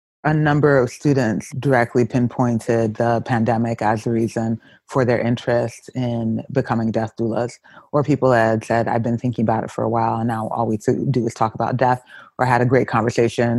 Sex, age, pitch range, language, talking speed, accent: female, 30-49, 115-125 Hz, English, 195 wpm, American